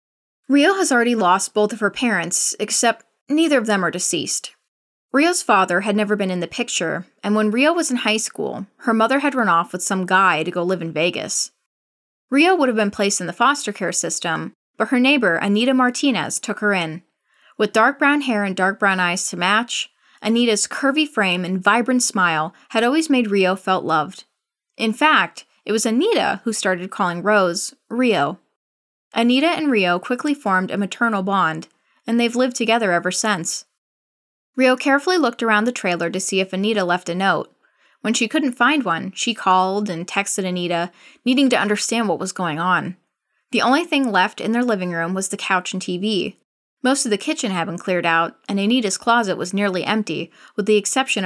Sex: female